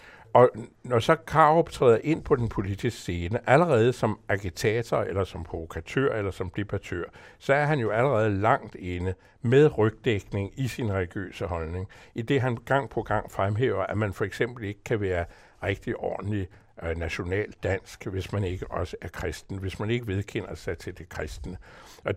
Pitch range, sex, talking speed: 95-125 Hz, male, 175 wpm